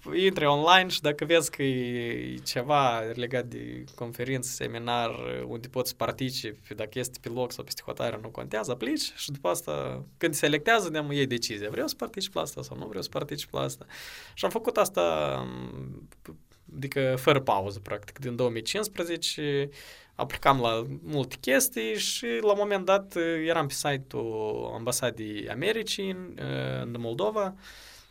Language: Romanian